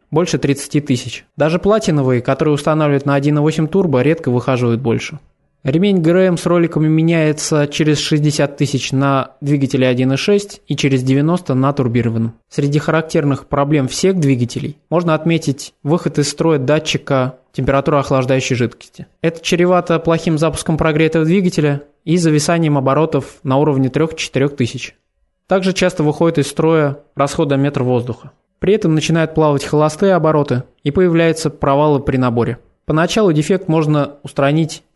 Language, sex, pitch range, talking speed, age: Russian, male, 135-165 Hz, 135 wpm, 20-39